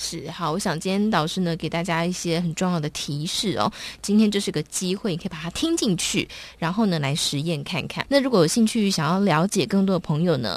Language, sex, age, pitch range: Chinese, female, 20-39, 170-210 Hz